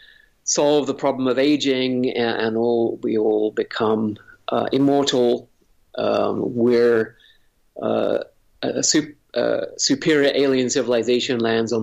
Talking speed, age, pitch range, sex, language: 120 wpm, 50-69, 110-135 Hz, male, English